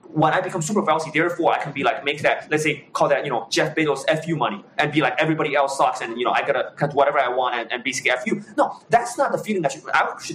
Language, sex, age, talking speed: English, male, 20-39, 295 wpm